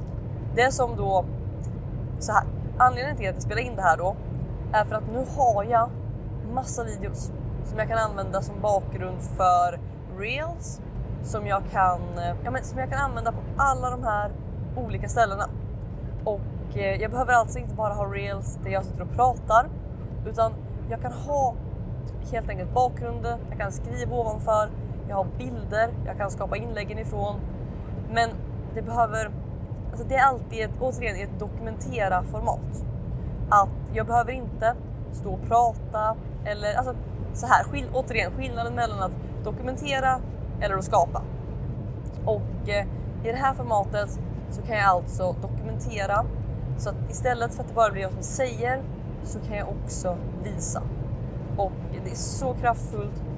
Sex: female